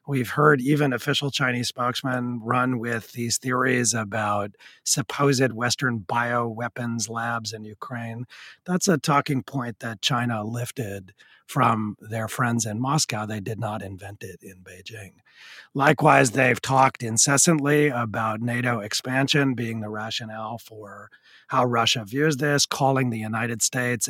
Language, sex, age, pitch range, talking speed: English, male, 40-59, 115-140 Hz, 135 wpm